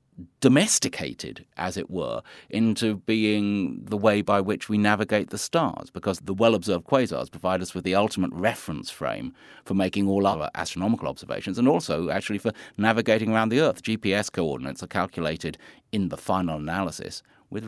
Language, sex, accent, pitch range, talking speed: English, male, British, 100-125 Hz, 165 wpm